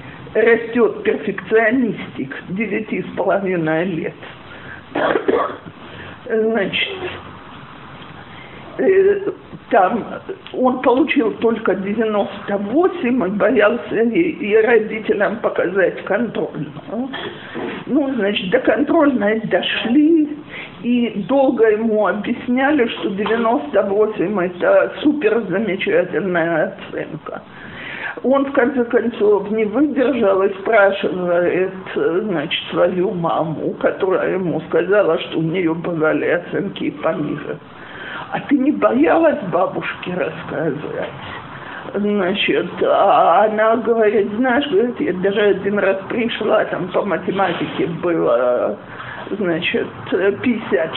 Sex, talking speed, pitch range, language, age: male, 90 wpm, 200-270 Hz, Russian, 50-69